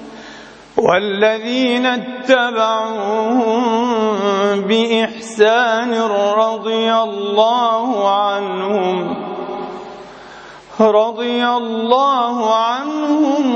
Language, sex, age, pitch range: English, male, 40-59, 200-225 Hz